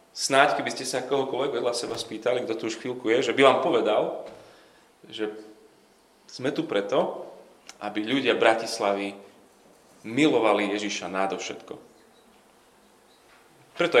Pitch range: 100-115 Hz